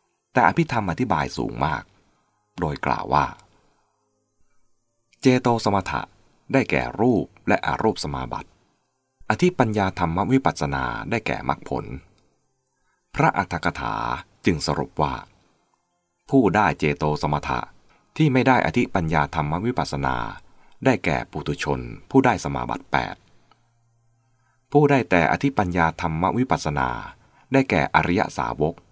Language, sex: English, male